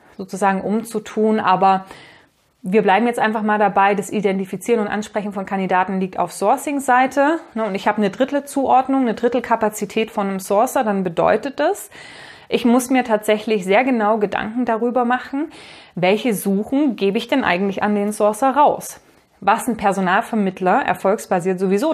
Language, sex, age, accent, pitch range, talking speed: German, female, 30-49, German, 195-240 Hz, 155 wpm